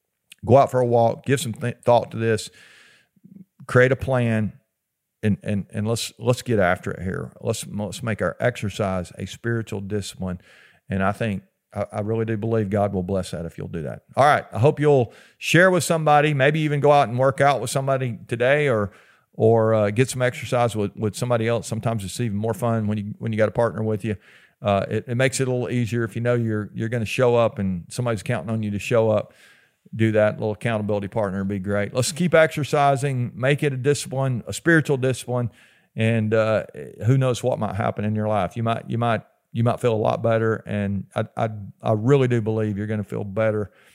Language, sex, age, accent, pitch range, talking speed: English, male, 50-69, American, 105-125 Hz, 225 wpm